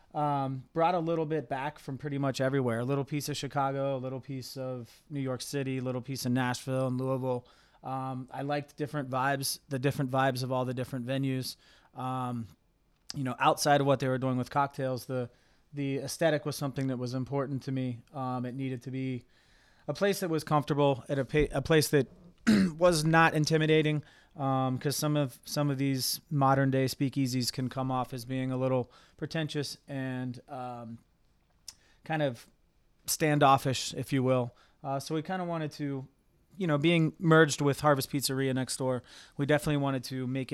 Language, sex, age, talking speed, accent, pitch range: English, male, 30-49, 190 wpm, American, 130-145 Hz